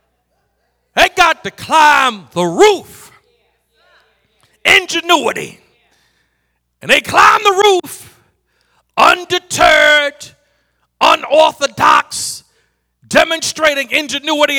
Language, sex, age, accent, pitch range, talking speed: English, male, 50-69, American, 220-305 Hz, 65 wpm